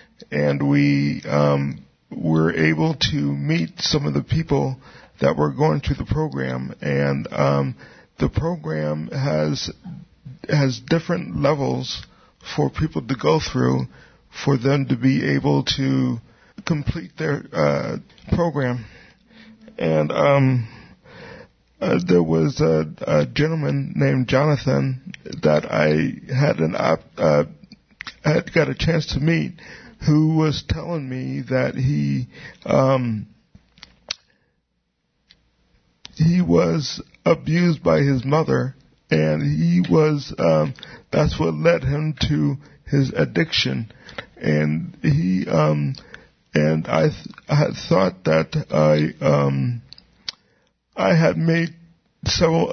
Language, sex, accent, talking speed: English, male, American, 120 wpm